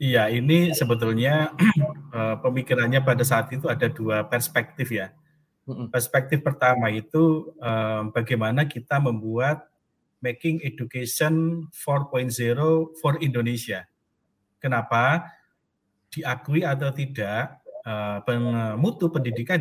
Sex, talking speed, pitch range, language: male, 95 wpm, 115-155 Hz, Indonesian